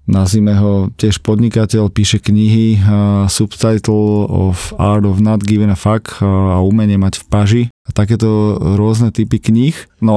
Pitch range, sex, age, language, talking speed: 105-115 Hz, male, 20-39, Slovak, 160 wpm